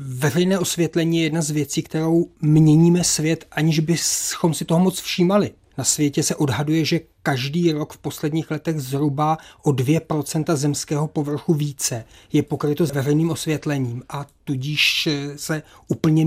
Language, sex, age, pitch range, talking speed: Czech, male, 30-49, 135-160 Hz, 150 wpm